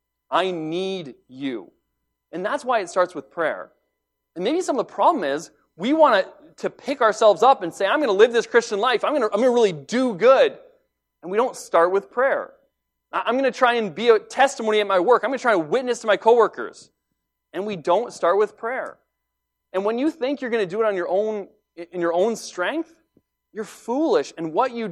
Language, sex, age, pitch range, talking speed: English, male, 30-49, 150-250 Hz, 230 wpm